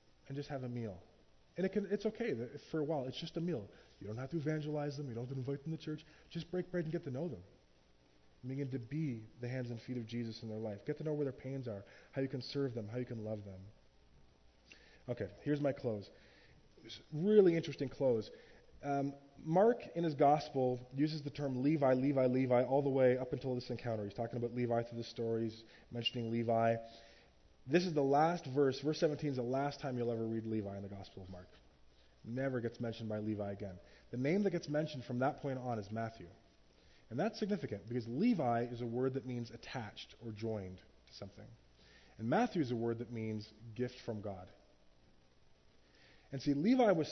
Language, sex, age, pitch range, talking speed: English, male, 20-39, 105-145 Hz, 215 wpm